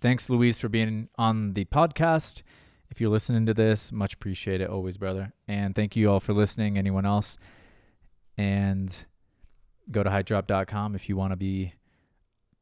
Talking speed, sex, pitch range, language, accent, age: 160 wpm, male, 95-110 Hz, English, American, 20-39